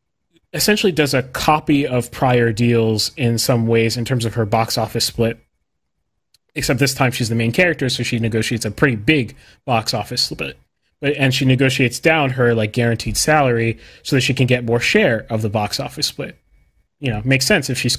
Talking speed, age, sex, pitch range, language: 200 wpm, 30-49, male, 115-135 Hz, English